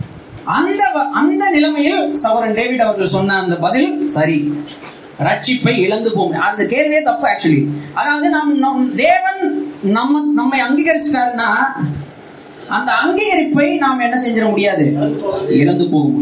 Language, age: Tamil, 30-49